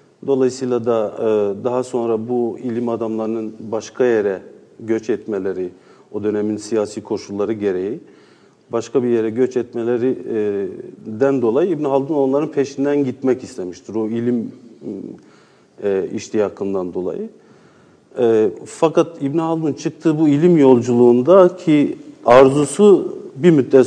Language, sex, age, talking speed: Turkish, male, 50-69, 115 wpm